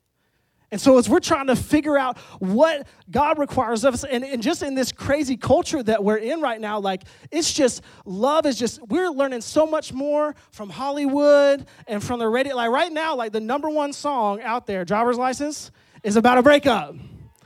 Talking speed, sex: 200 wpm, male